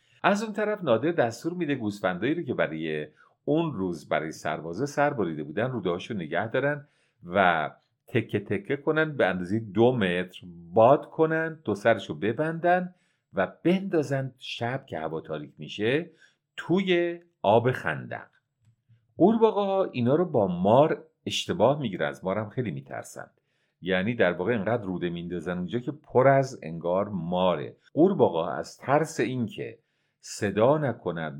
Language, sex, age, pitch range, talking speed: English, male, 50-69, 105-155 Hz, 140 wpm